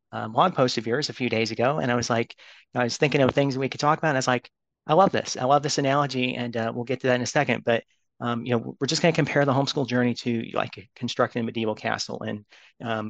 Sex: male